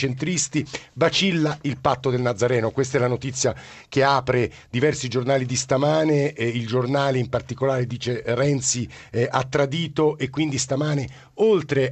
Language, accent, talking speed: Italian, native, 150 wpm